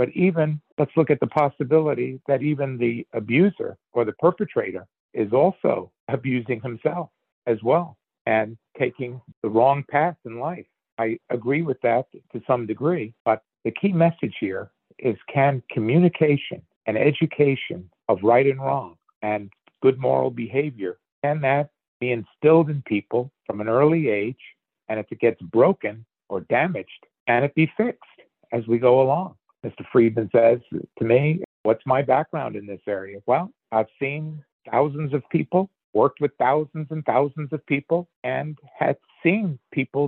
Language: English